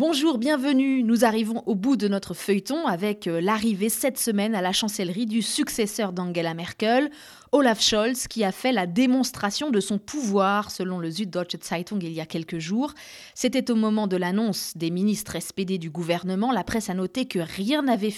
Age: 30-49